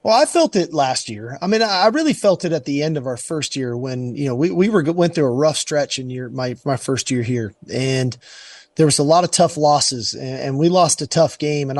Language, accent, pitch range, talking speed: English, American, 130-160 Hz, 270 wpm